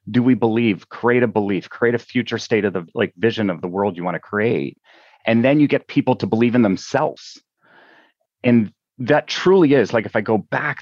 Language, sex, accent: English, male, American